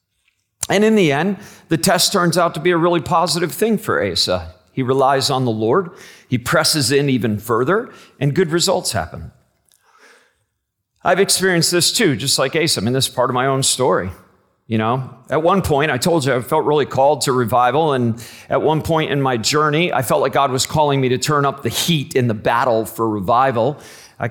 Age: 40-59